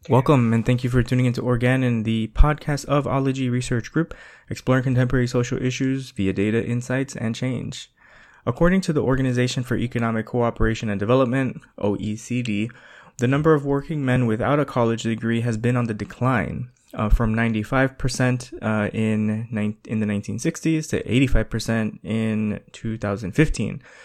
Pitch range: 110-135 Hz